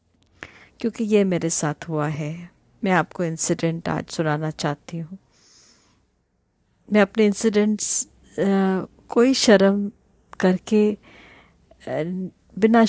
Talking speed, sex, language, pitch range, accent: 95 wpm, female, Hindi, 170-210 Hz, native